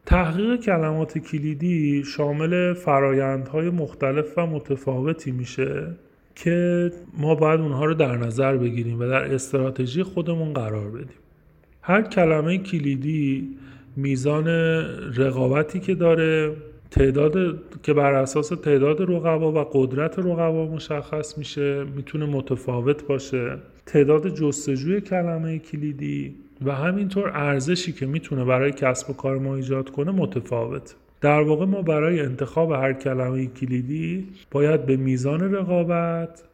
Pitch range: 135-165 Hz